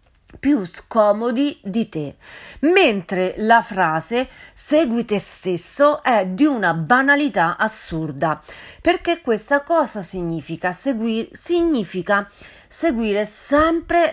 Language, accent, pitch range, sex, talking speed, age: Italian, native, 190-270 Hz, female, 95 wpm, 40-59